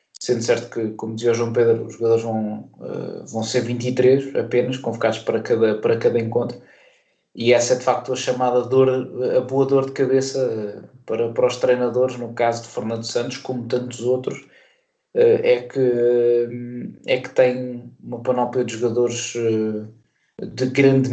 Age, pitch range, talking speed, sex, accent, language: 20-39, 115-130 Hz, 160 wpm, male, Portuguese, Portuguese